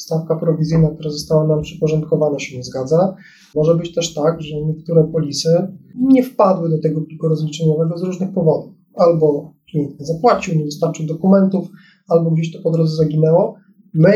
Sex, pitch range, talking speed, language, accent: male, 155-190 Hz, 165 wpm, Polish, native